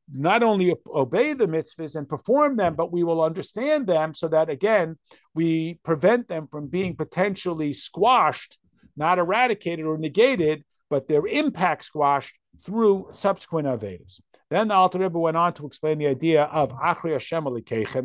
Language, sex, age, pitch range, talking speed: English, male, 50-69, 150-185 Hz, 150 wpm